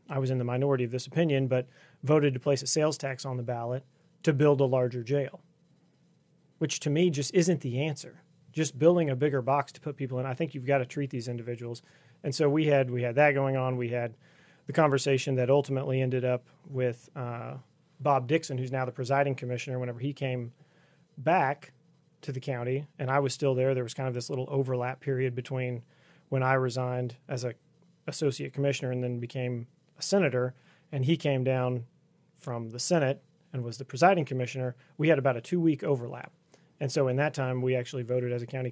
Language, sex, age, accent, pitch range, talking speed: English, male, 30-49, American, 125-155 Hz, 210 wpm